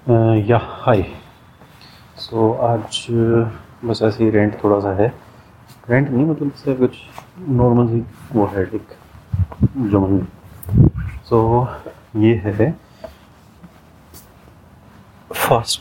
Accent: native